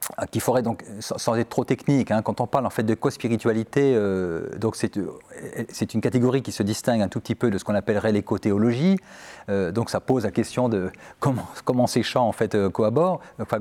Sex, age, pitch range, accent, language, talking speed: male, 40-59, 105-130 Hz, French, French, 215 wpm